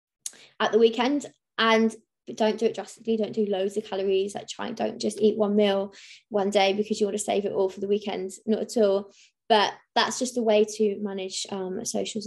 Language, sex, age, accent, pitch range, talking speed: English, female, 20-39, British, 195-230 Hz, 220 wpm